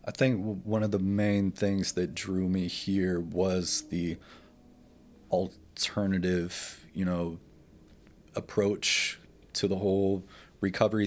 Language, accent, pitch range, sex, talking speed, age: English, American, 85-100 Hz, male, 115 wpm, 30-49